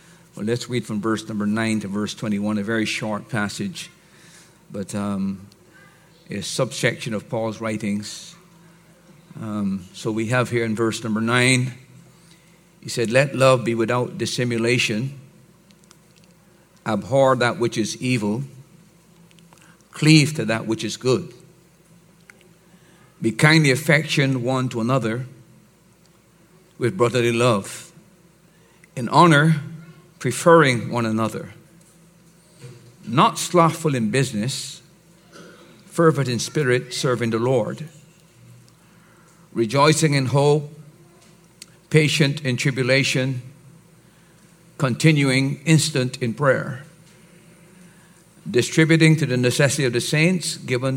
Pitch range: 120-170 Hz